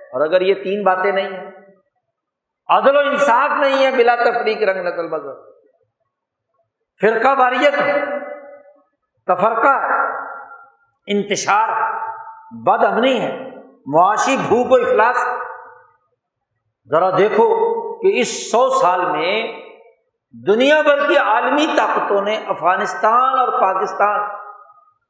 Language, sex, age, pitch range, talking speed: Urdu, male, 60-79, 210-290 Hz, 110 wpm